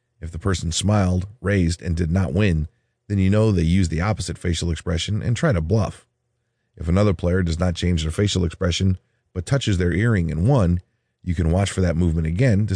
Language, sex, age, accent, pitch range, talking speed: English, male, 30-49, American, 85-115 Hz, 210 wpm